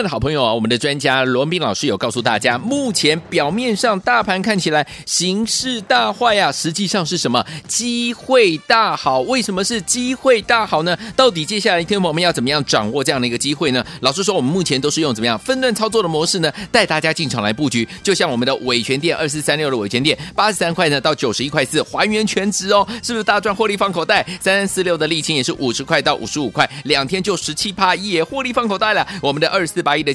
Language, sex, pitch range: Chinese, male, 140-210 Hz